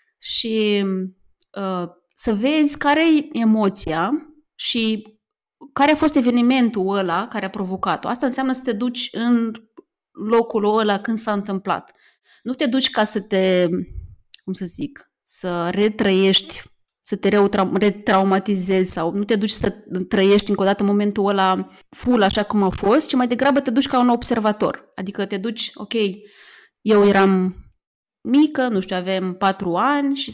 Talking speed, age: 155 wpm, 30-49